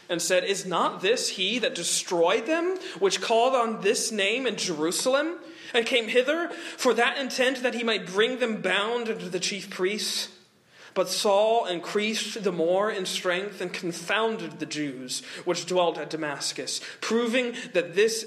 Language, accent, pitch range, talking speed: English, American, 185-245 Hz, 165 wpm